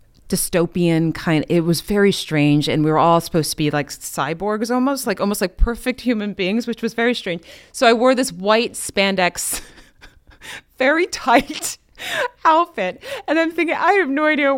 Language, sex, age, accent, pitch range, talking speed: English, female, 30-49, American, 155-220 Hz, 175 wpm